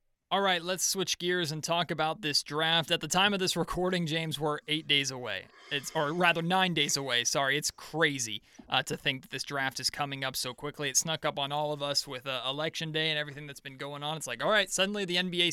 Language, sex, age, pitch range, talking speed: English, male, 20-39, 140-175 Hz, 245 wpm